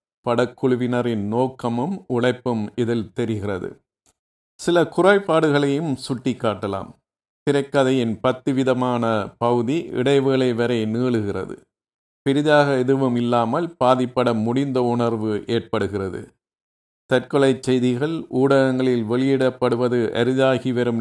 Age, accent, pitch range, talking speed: 50-69, native, 120-135 Hz, 75 wpm